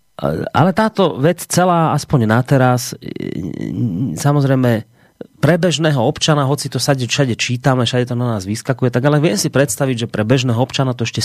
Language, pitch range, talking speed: Slovak, 105-140 Hz, 165 wpm